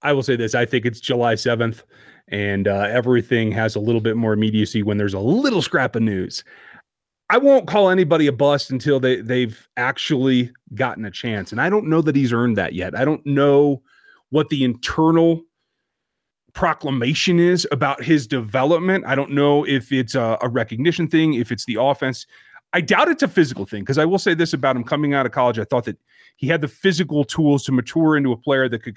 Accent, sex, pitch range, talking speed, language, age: American, male, 125-180 Hz, 215 wpm, English, 30-49